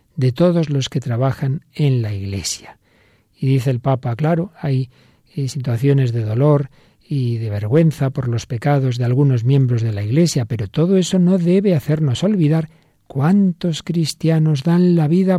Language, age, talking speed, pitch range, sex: Spanish, 50-69, 160 wpm, 125-160 Hz, male